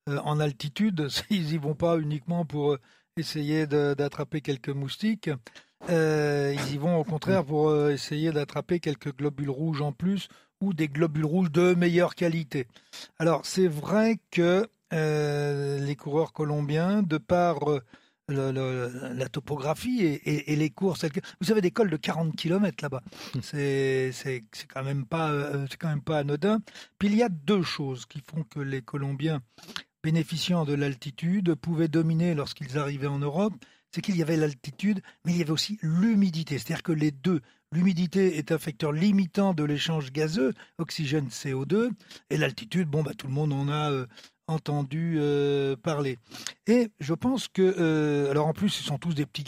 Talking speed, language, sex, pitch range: 175 wpm, French, male, 145-175 Hz